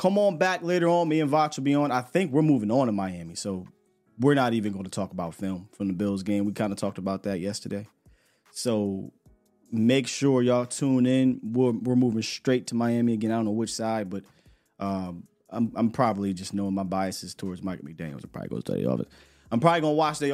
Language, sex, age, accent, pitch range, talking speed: English, male, 20-39, American, 100-130 Hz, 220 wpm